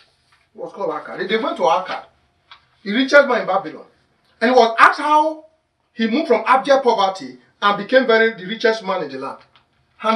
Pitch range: 185-275 Hz